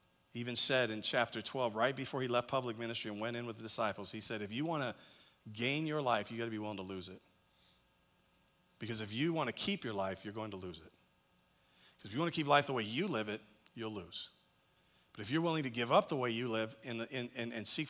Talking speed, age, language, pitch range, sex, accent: 255 wpm, 40-59, English, 105-130 Hz, male, American